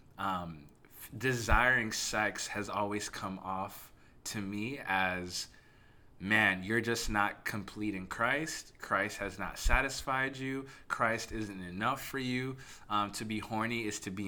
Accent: American